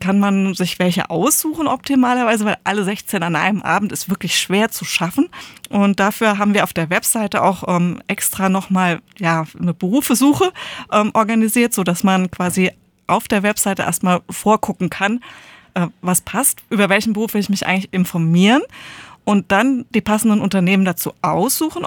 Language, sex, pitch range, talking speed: German, female, 180-230 Hz, 160 wpm